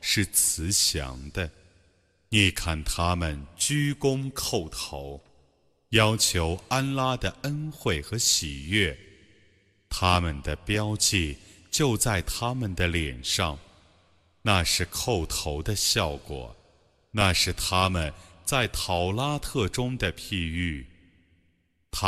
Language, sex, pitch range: Arabic, male, 80-110 Hz